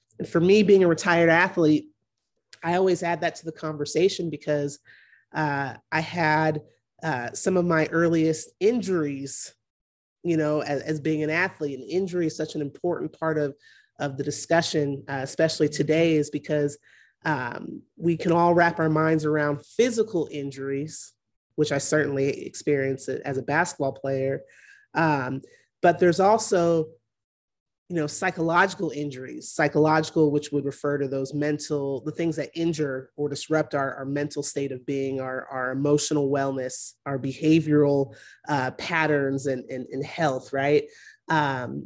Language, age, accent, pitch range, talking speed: English, 30-49, American, 140-165 Hz, 150 wpm